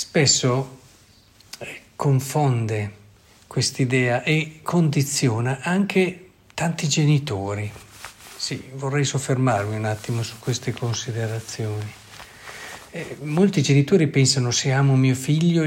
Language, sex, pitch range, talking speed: Italian, male, 125-150 Hz, 90 wpm